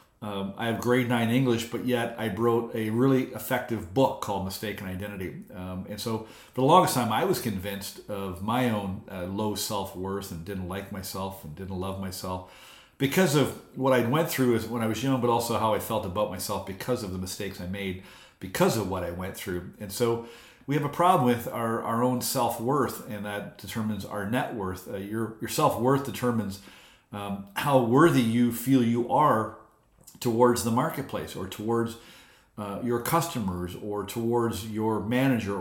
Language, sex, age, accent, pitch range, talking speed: English, male, 50-69, American, 100-125 Hz, 190 wpm